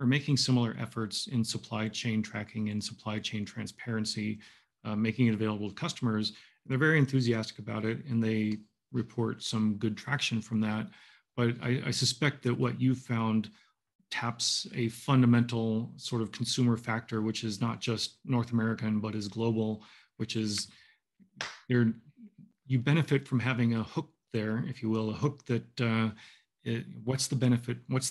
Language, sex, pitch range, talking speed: English, male, 110-125 Hz, 165 wpm